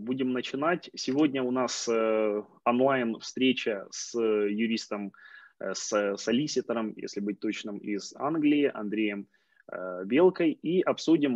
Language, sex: Ukrainian, male